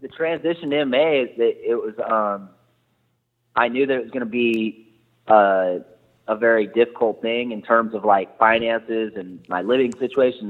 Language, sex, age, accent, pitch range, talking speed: English, male, 20-39, American, 105-130 Hz, 175 wpm